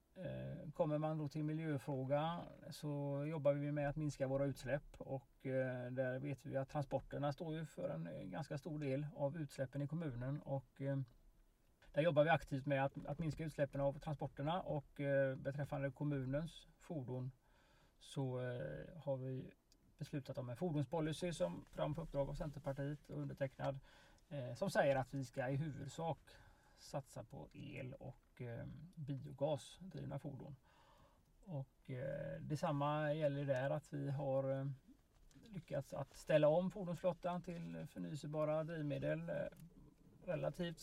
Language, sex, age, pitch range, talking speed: Swedish, male, 30-49, 135-150 Hz, 135 wpm